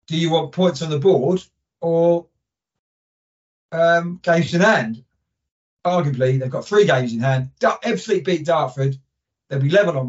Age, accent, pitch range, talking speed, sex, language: 40-59, British, 125-165 Hz, 155 wpm, male, English